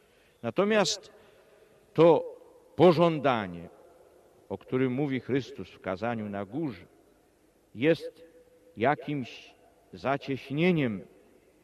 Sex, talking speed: male, 70 wpm